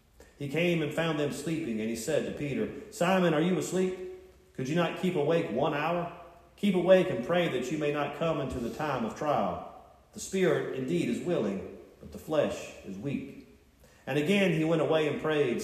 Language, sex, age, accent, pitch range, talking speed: English, male, 40-59, American, 135-175 Hz, 205 wpm